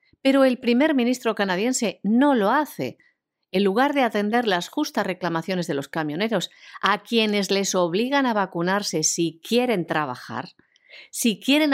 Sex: female